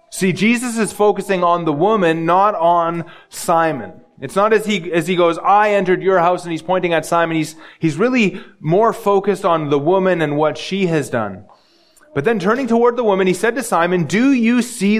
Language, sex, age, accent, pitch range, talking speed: English, male, 30-49, American, 155-200 Hz, 210 wpm